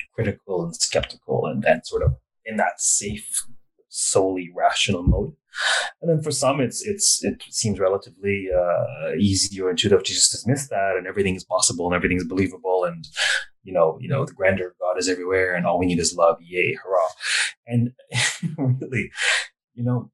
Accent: Canadian